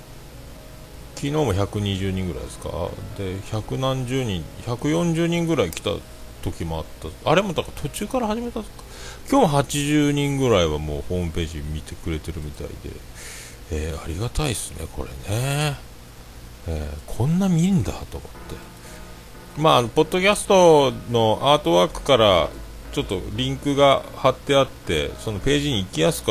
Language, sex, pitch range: Japanese, male, 85-140 Hz